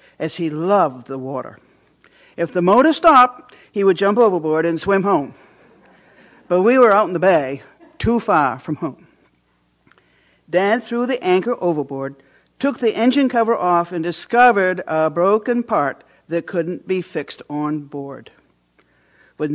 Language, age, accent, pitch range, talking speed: English, 60-79, American, 155-215 Hz, 150 wpm